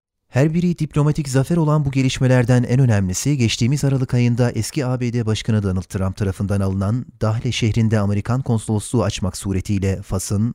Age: 30-49